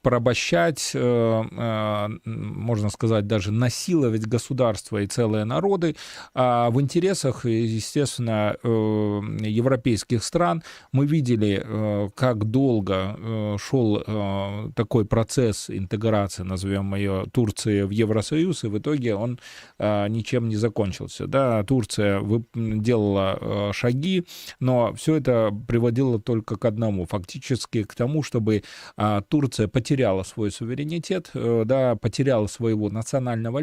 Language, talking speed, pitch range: Russian, 100 wpm, 105-130 Hz